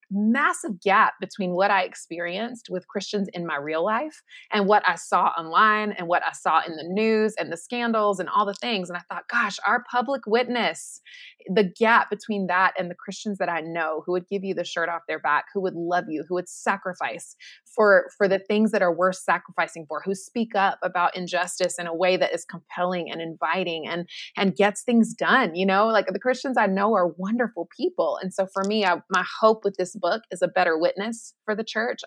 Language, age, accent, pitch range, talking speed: English, 20-39, American, 180-230 Hz, 220 wpm